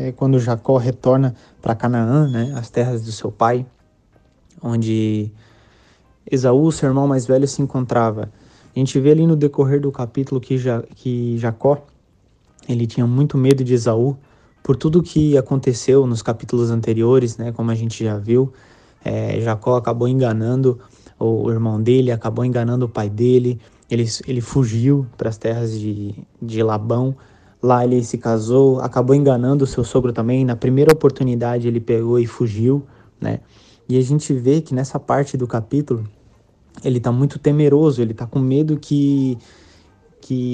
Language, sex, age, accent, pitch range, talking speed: Portuguese, male, 20-39, Brazilian, 115-140 Hz, 160 wpm